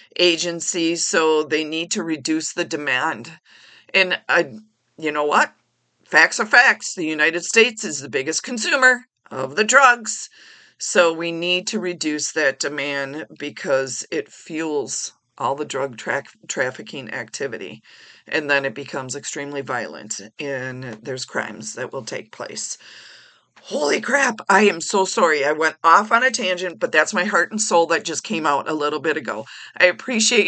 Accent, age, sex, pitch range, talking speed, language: American, 40-59, female, 155-215 Hz, 160 wpm, English